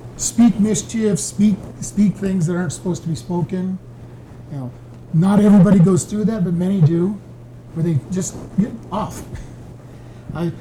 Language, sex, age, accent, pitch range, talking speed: English, male, 50-69, American, 145-195 Hz, 155 wpm